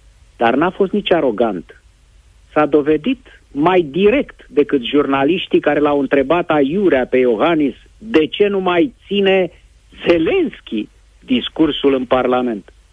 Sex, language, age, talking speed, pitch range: male, Romanian, 50-69, 120 wpm, 105-165 Hz